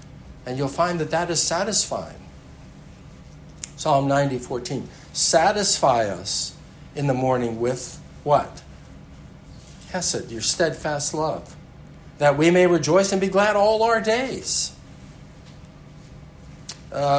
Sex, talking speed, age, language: male, 110 wpm, 60-79, English